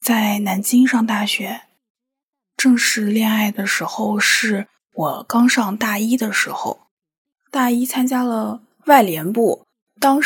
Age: 20-39